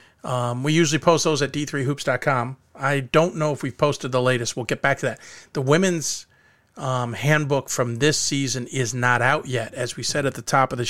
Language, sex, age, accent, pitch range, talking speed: English, male, 40-59, American, 120-145 Hz, 215 wpm